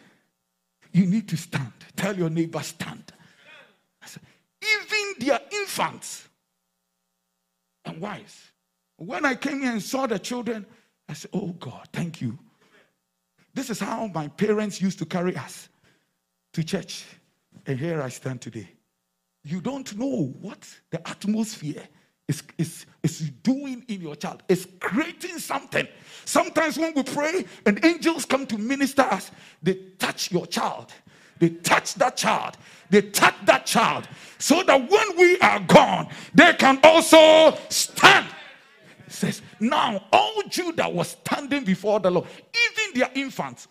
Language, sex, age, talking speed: English, male, 50-69, 145 wpm